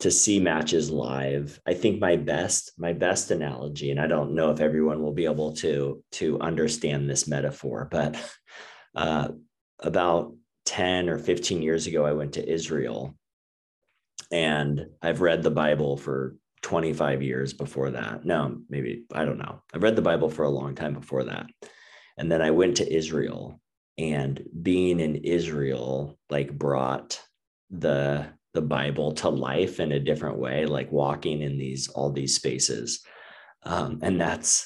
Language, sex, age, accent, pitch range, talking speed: English, male, 30-49, American, 70-80 Hz, 160 wpm